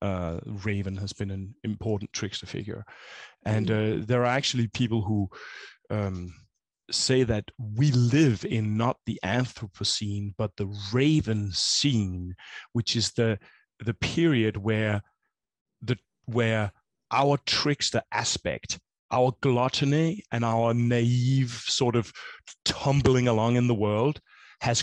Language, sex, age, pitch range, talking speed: English, male, 30-49, 105-125 Hz, 125 wpm